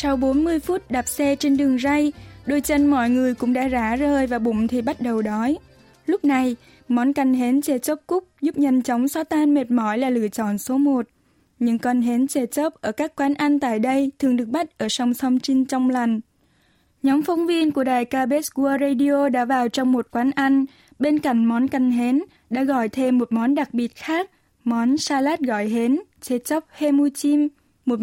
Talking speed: 210 wpm